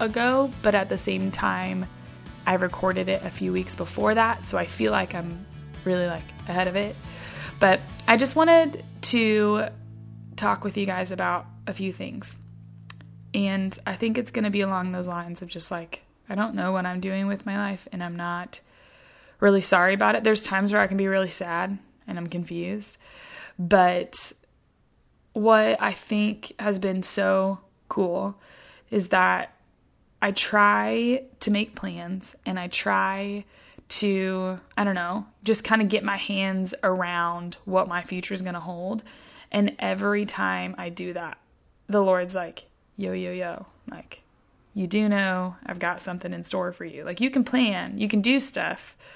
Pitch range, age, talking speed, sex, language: 175-210 Hz, 20-39, 175 wpm, female, English